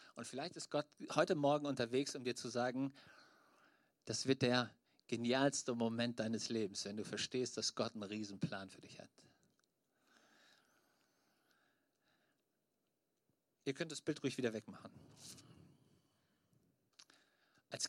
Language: German